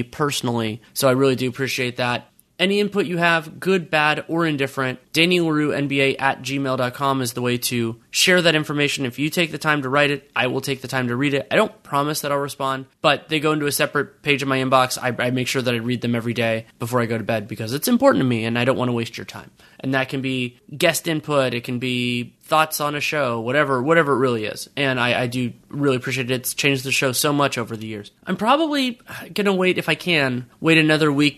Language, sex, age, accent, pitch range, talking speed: English, male, 20-39, American, 125-150 Hz, 250 wpm